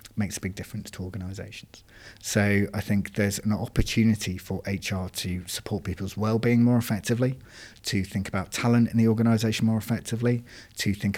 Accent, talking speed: British, 165 wpm